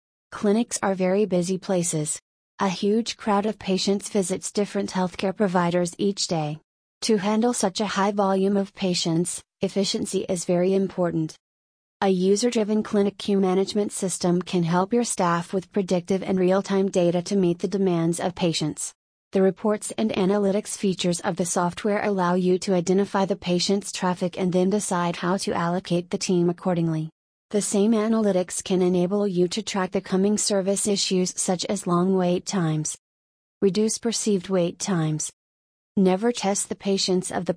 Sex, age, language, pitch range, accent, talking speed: female, 30-49, English, 180-200 Hz, American, 160 wpm